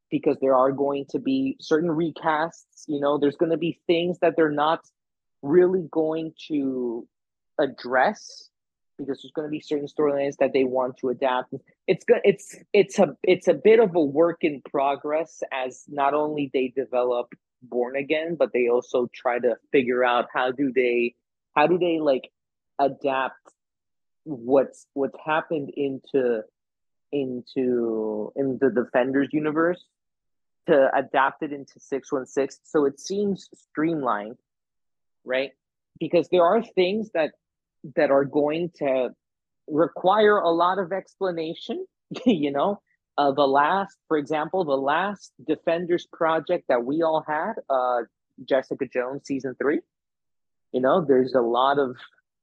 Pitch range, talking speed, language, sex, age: 135-165 Hz, 145 wpm, English, male, 30-49